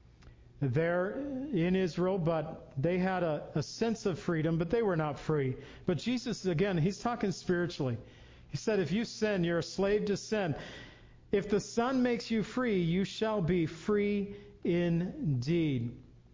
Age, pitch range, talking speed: 50-69, 155-200 Hz, 160 wpm